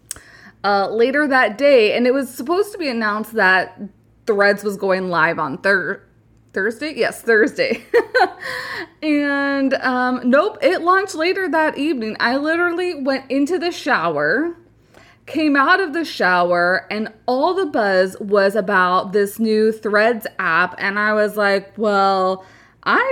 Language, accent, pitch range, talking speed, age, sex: English, American, 205-285 Hz, 145 wpm, 20-39, female